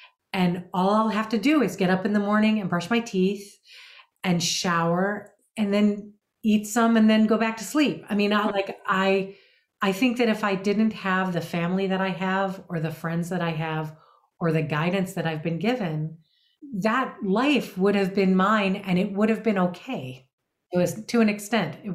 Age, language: 40-59, English